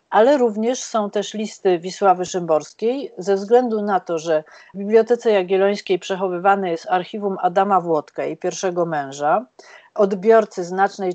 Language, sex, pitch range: Polish, female, 175-230 Hz